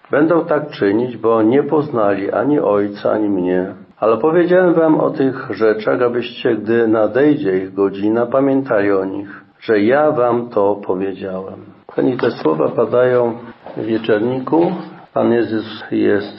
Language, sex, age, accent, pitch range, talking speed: Polish, male, 50-69, native, 100-130 Hz, 140 wpm